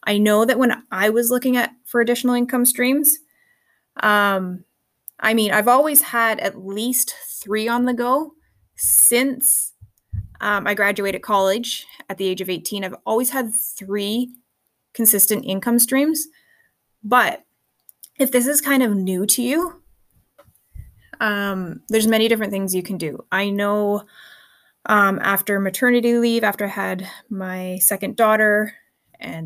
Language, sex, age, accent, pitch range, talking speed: English, female, 20-39, American, 195-245 Hz, 145 wpm